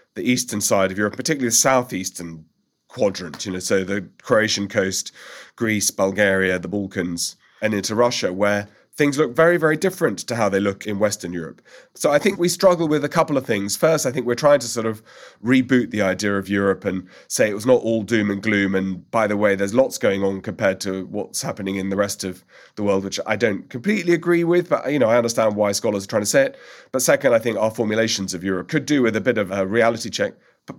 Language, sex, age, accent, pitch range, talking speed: English, male, 30-49, British, 100-130 Hz, 235 wpm